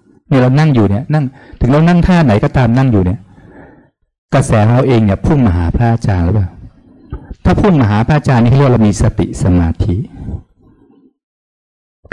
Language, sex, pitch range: Thai, male, 95-130 Hz